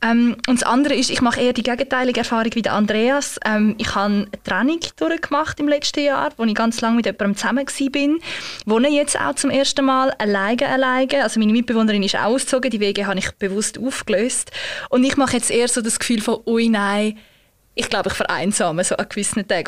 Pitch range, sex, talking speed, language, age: 205-245 Hz, female, 205 wpm, German, 20-39